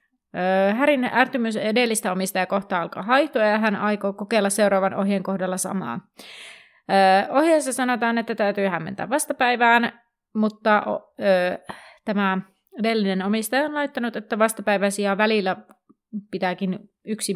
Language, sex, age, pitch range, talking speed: Finnish, female, 30-49, 190-235 Hz, 120 wpm